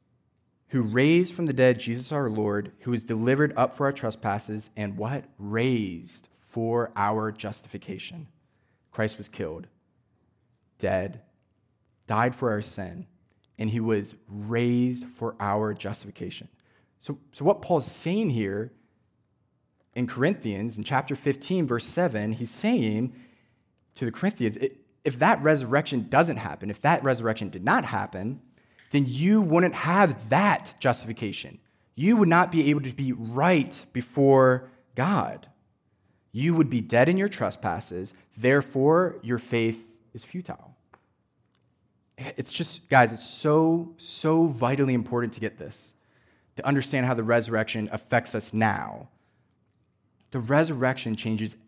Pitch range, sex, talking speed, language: 110-140 Hz, male, 135 wpm, English